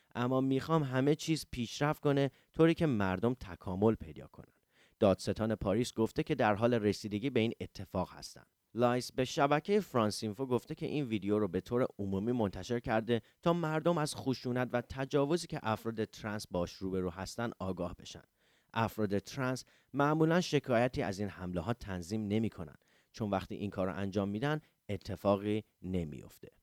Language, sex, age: English, male, 30-49